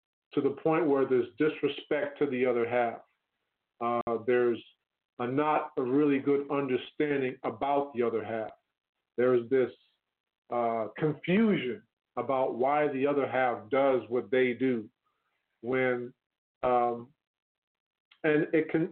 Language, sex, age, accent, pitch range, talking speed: English, male, 40-59, American, 130-175 Hz, 125 wpm